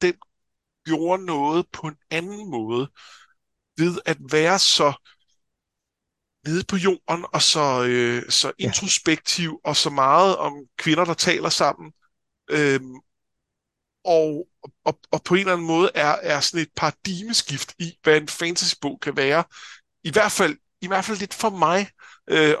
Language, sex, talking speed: Danish, male, 150 wpm